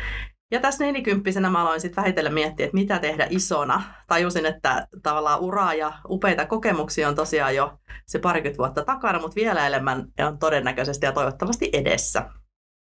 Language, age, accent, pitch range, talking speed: Finnish, 30-49, native, 150-195 Hz, 160 wpm